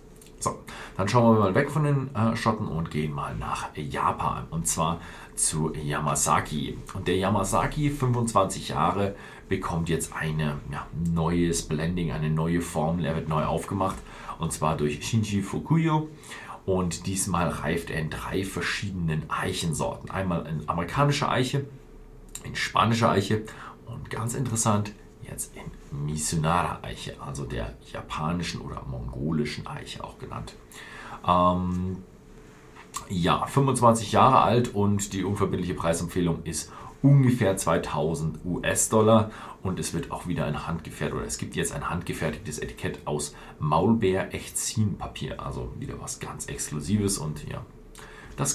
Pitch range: 80-115 Hz